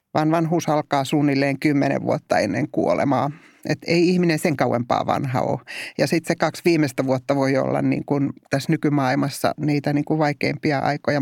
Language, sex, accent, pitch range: Finnish, male, native, 140-170 Hz